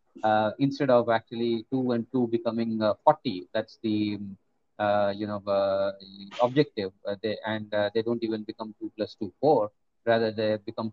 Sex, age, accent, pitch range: male, 30-49, Indian, 105-120 Hz